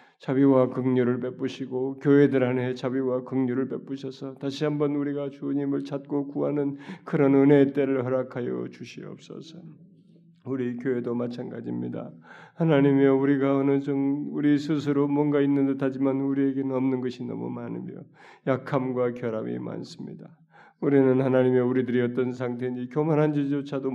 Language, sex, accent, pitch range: Korean, male, native, 130-145 Hz